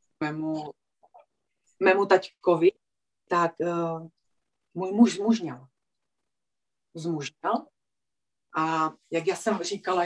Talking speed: 85 wpm